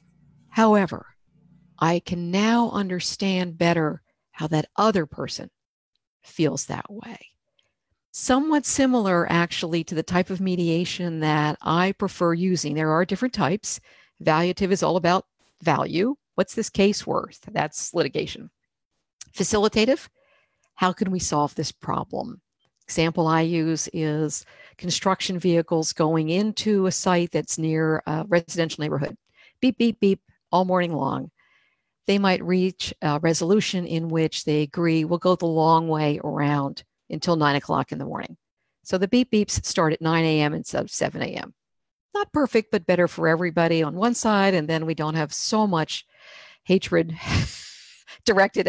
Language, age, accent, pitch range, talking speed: English, 50-69, American, 160-195 Hz, 145 wpm